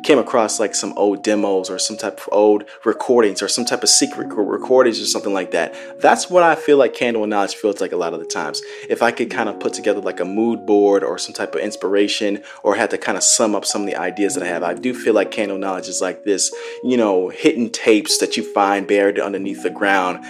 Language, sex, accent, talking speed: English, male, American, 255 wpm